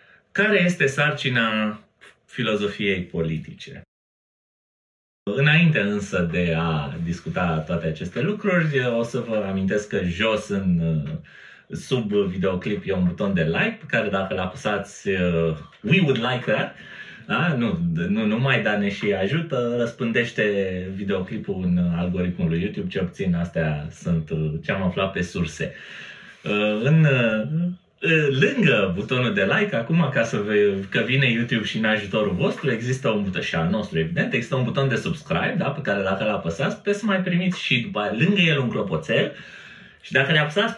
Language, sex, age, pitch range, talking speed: Romanian, male, 30-49, 95-150 Hz, 155 wpm